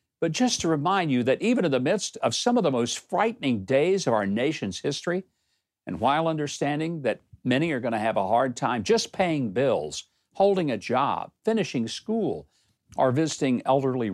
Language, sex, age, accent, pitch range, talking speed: English, male, 60-79, American, 130-195 Hz, 185 wpm